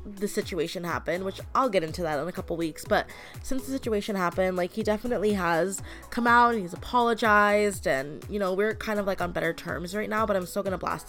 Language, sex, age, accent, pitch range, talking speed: English, female, 20-39, American, 175-215 Hz, 240 wpm